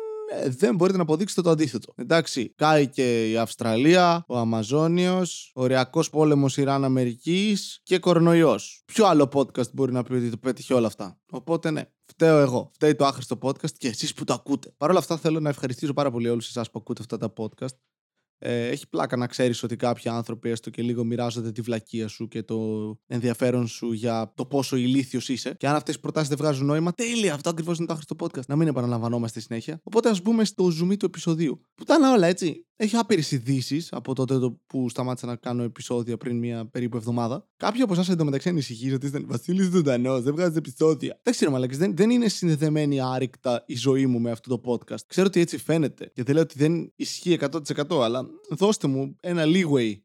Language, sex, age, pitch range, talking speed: Greek, male, 20-39, 125-170 Hz, 205 wpm